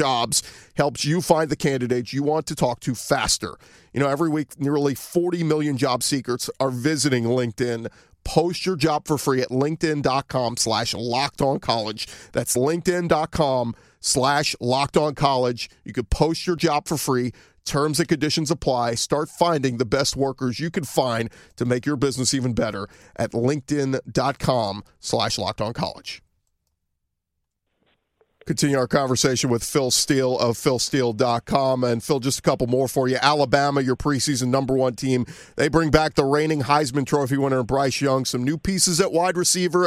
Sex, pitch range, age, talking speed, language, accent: male, 125-155 Hz, 40-59, 165 wpm, English, American